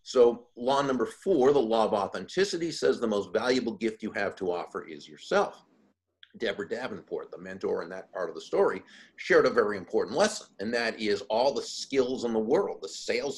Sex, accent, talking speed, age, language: male, American, 200 wpm, 50-69, English